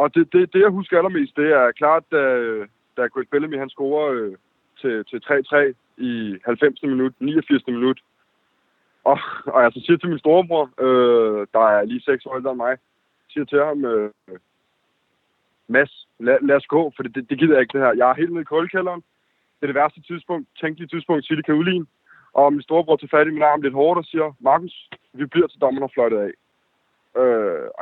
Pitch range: 130-170 Hz